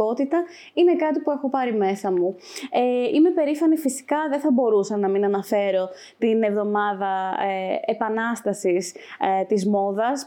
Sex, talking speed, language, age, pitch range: female, 125 wpm, Greek, 20-39, 195-280 Hz